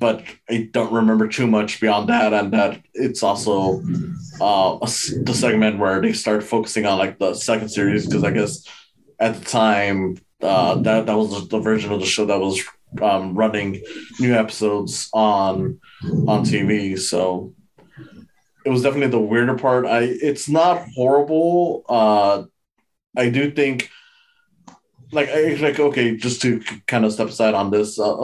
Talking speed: 165 wpm